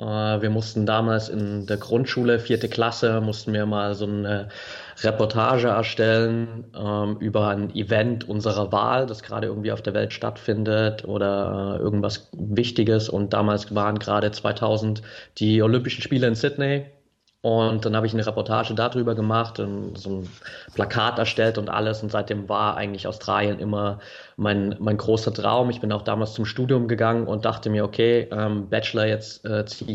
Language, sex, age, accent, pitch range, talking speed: English, male, 20-39, German, 105-115 Hz, 165 wpm